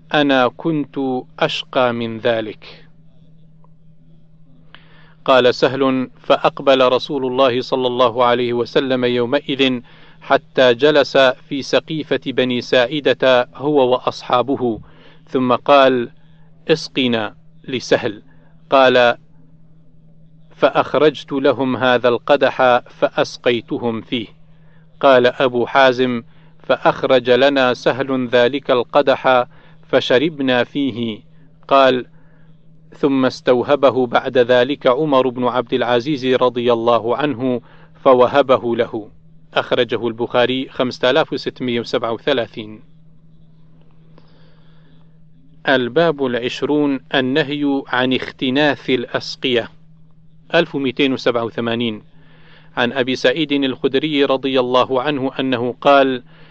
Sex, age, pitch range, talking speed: male, 40-59, 125-155 Hz, 85 wpm